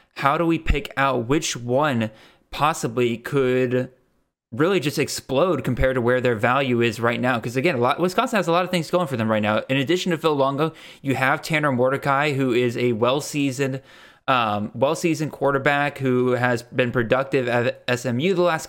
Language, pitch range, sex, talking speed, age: English, 120-150 Hz, male, 190 wpm, 20-39